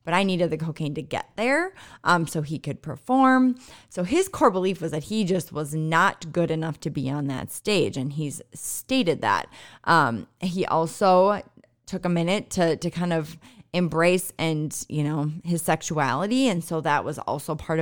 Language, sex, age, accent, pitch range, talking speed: English, female, 20-39, American, 145-185 Hz, 190 wpm